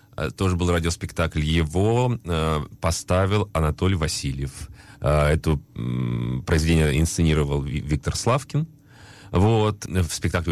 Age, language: 30-49, Russian